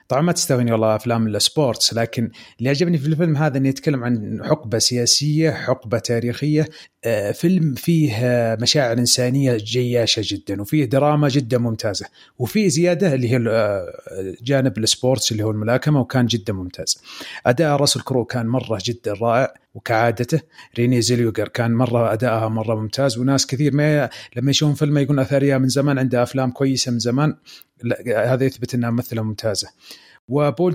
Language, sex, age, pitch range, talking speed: Arabic, male, 30-49, 115-145 Hz, 150 wpm